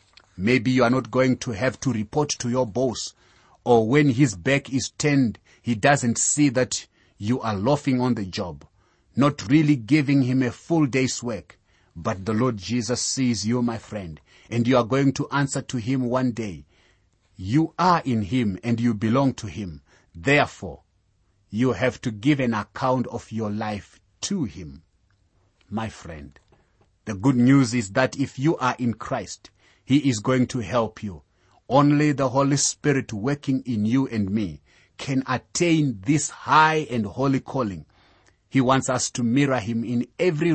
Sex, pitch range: male, 100-135 Hz